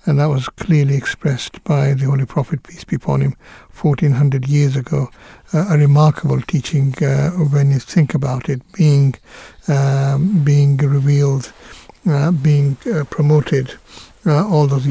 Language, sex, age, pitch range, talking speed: English, male, 60-79, 140-155 Hz, 150 wpm